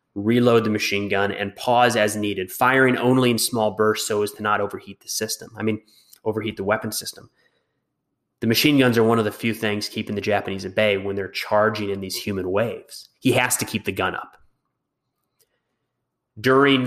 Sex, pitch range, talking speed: male, 105-125 Hz, 195 wpm